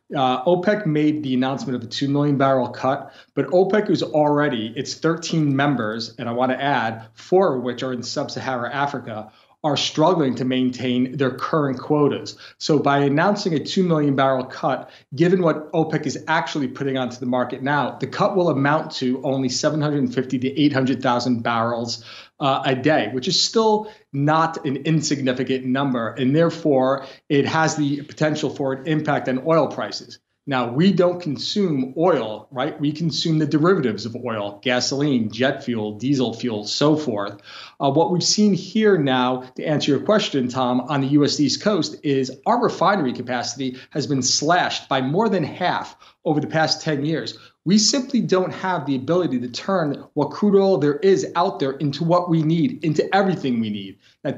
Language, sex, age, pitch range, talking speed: English, male, 30-49, 130-160 Hz, 180 wpm